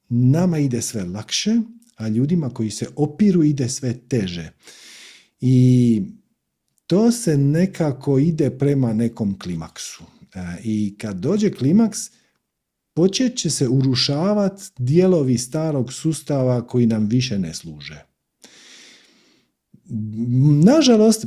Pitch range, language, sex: 120-190 Hz, Croatian, male